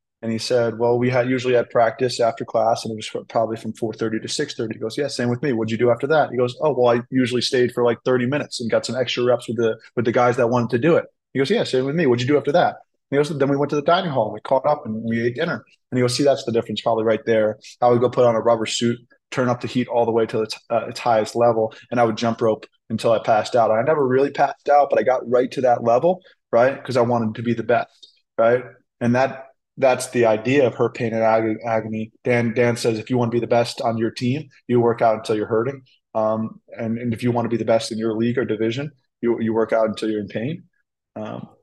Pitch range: 115-130 Hz